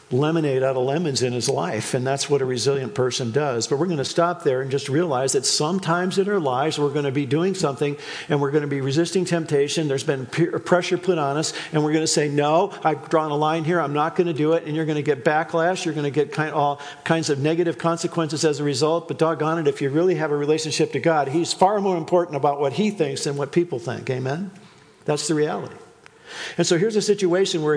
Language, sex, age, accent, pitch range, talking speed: English, male, 50-69, American, 140-170 Hz, 250 wpm